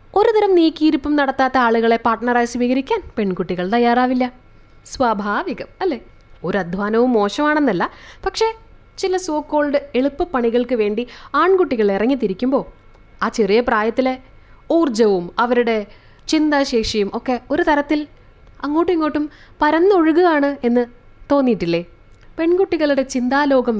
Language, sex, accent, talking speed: Malayalam, female, native, 90 wpm